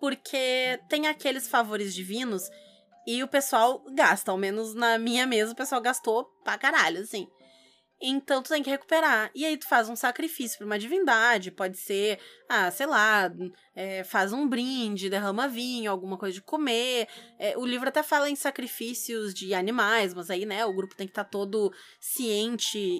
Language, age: Portuguese, 20-39